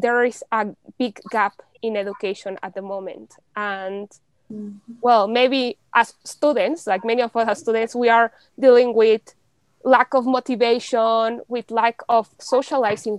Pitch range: 215-255 Hz